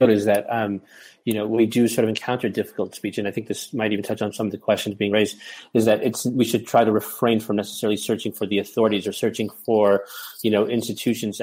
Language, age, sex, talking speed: English, 30-49, male, 240 wpm